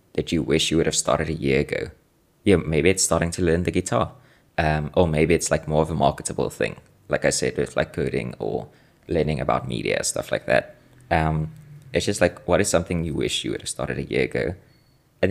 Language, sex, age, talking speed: English, male, 20-39, 225 wpm